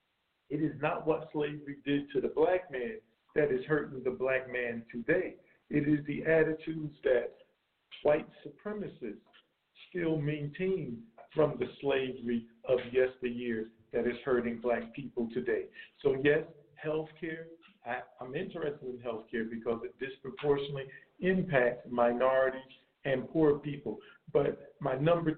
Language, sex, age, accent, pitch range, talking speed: English, male, 50-69, American, 130-170 Hz, 135 wpm